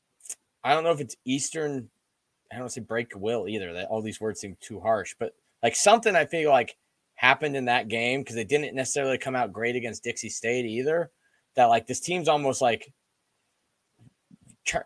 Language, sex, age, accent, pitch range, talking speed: English, male, 20-39, American, 120-140 Hz, 190 wpm